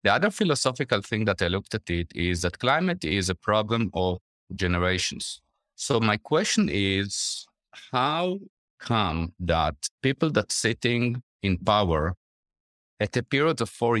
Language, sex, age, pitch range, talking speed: English, male, 50-69, 90-120 Hz, 145 wpm